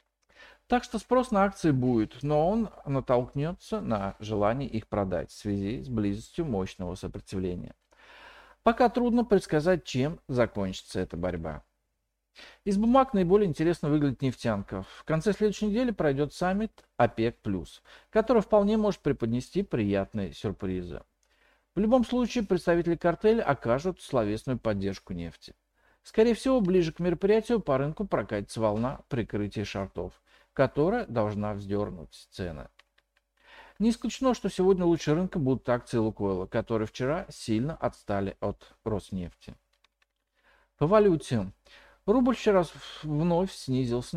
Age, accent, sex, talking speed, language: 50-69, native, male, 120 wpm, Russian